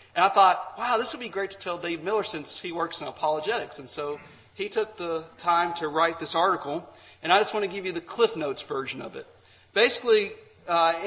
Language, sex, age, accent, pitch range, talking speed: English, male, 40-59, American, 155-215 Hz, 230 wpm